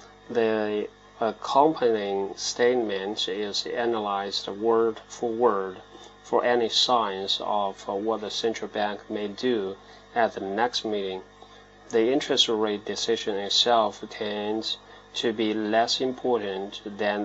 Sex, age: male, 30-49